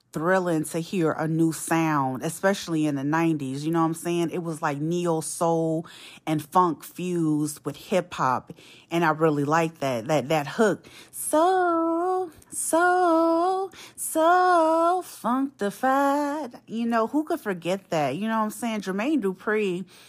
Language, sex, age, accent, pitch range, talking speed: English, female, 30-49, American, 160-210 Hz, 150 wpm